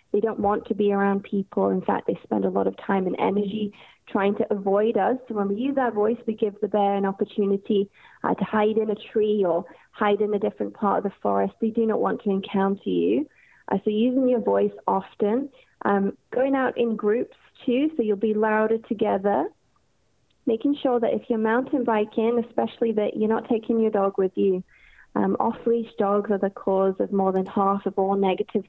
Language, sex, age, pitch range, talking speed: English, female, 30-49, 195-230 Hz, 210 wpm